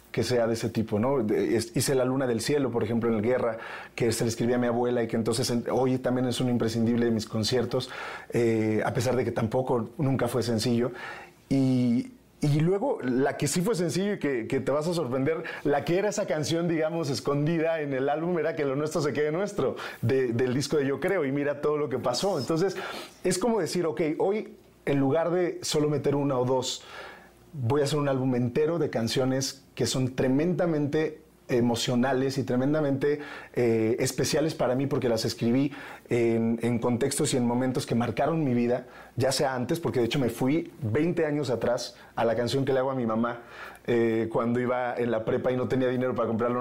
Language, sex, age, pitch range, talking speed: Spanish, male, 30-49, 120-150 Hz, 210 wpm